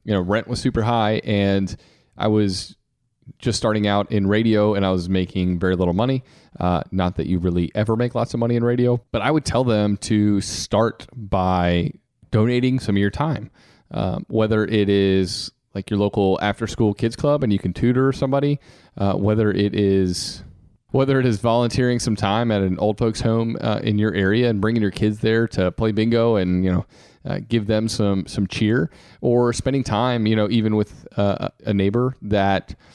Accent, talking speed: American, 200 wpm